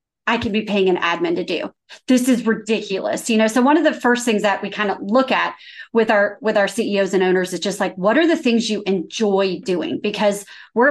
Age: 30-49